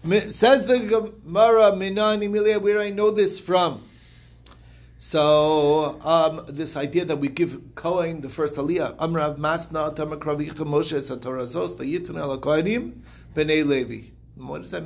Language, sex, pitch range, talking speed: English, male, 125-170 Hz, 140 wpm